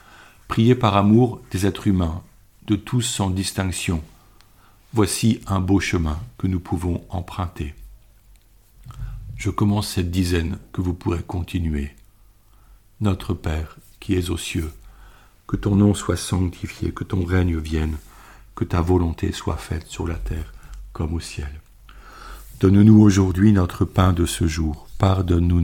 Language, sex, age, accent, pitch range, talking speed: French, male, 50-69, French, 85-100 Hz, 140 wpm